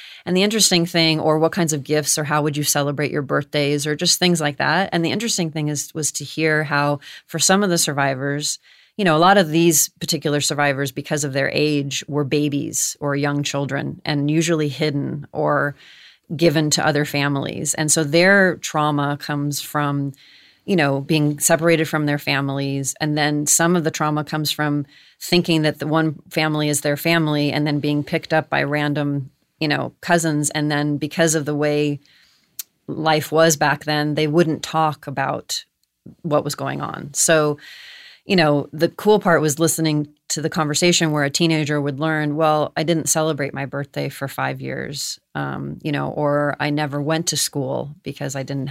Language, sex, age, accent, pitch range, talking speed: English, female, 30-49, American, 145-160 Hz, 190 wpm